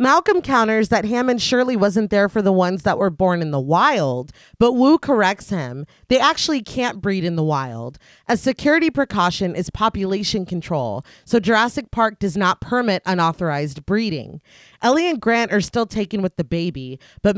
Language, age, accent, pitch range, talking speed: English, 30-49, American, 170-235 Hz, 175 wpm